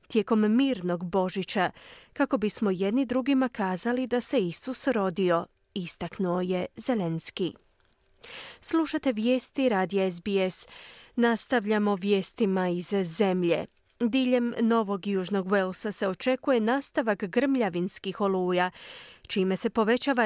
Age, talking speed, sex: 30-49, 105 wpm, female